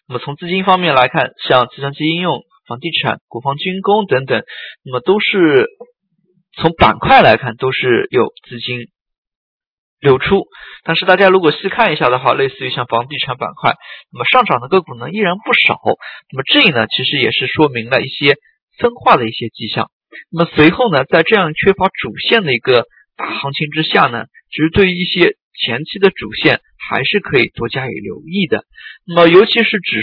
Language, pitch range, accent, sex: Chinese, 135-205 Hz, native, male